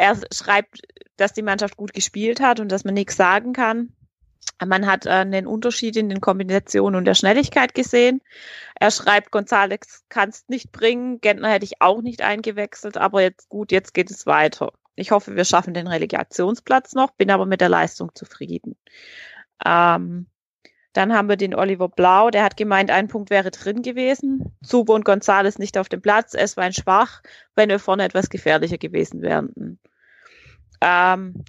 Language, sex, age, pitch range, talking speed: German, female, 20-39, 185-215 Hz, 175 wpm